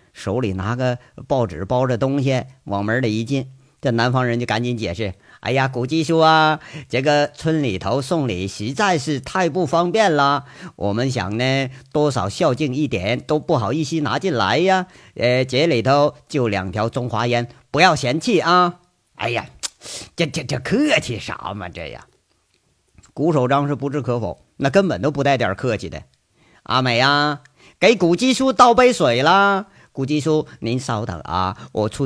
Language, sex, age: Chinese, male, 50-69